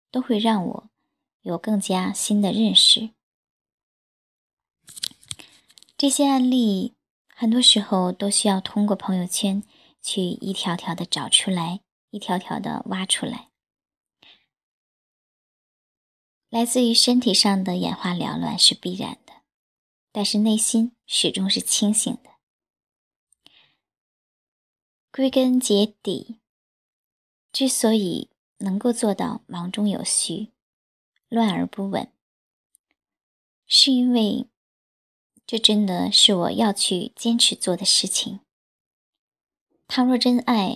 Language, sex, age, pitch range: Chinese, male, 10-29, 190-235 Hz